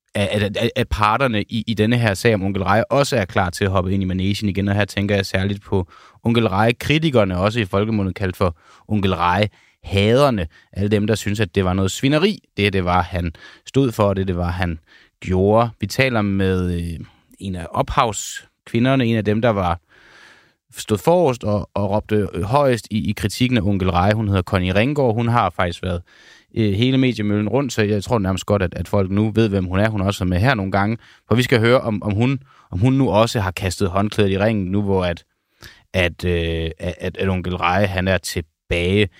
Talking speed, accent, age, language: 215 wpm, native, 30-49, Danish